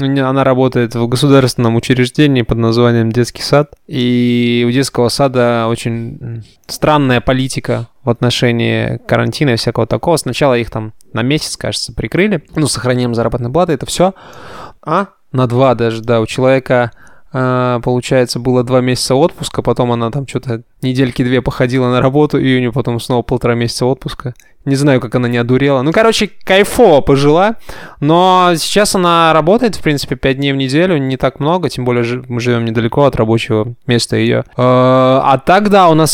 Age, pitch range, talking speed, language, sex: 20-39, 120-145 Hz, 165 wpm, Russian, male